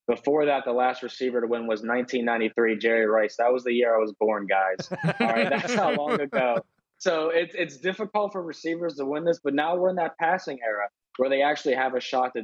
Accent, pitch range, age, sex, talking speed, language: American, 115-130 Hz, 20-39, male, 230 wpm, English